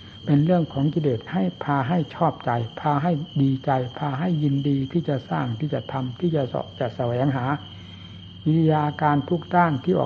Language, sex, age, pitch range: Thai, male, 60-79, 125-155 Hz